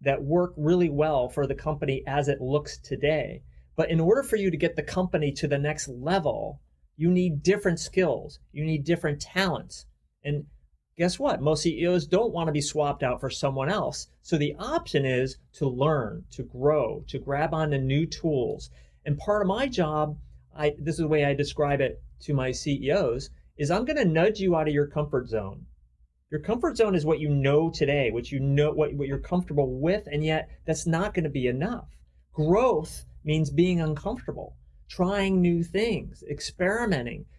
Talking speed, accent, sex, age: 180 wpm, American, male, 30-49